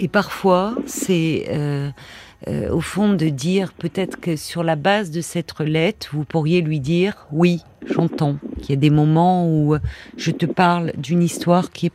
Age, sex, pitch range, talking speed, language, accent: 50-69, female, 160-190 Hz, 185 wpm, French, French